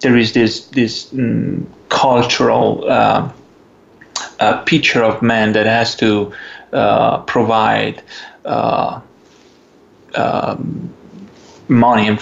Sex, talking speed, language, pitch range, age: male, 100 wpm, English, 115-140 Hz, 30-49